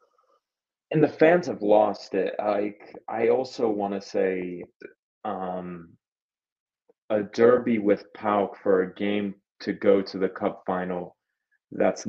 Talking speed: 135 wpm